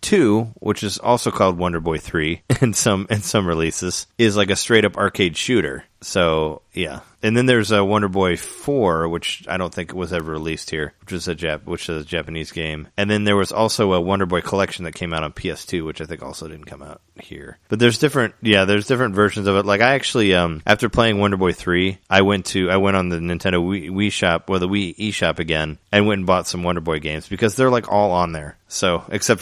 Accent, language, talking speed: American, English, 240 wpm